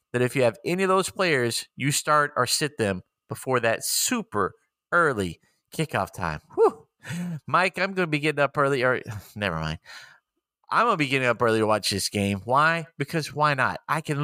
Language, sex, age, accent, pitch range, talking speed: English, male, 30-49, American, 120-155 Hz, 195 wpm